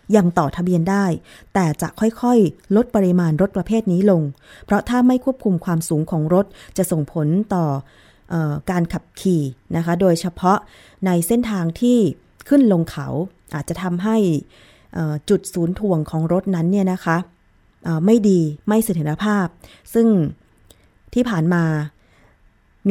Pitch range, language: 160-205 Hz, Thai